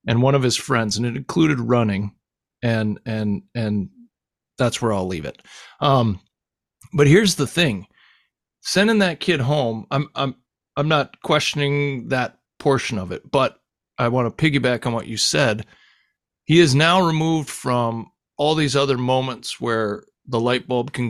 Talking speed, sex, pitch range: 165 wpm, male, 115-145 Hz